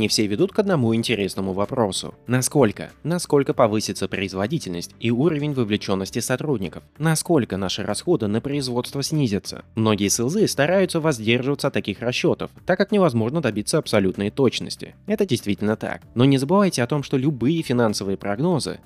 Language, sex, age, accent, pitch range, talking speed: Russian, male, 20-39, native, 100-150 Hz, 145 wpm